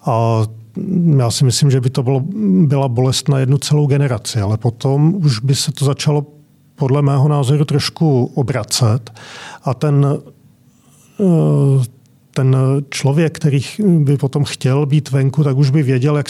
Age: 40-59